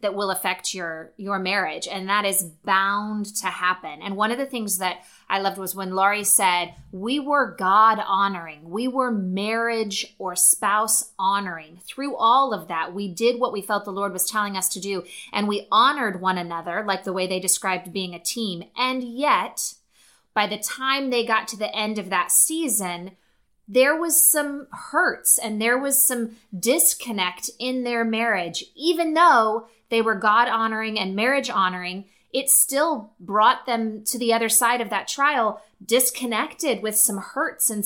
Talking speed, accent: 175 wpm, American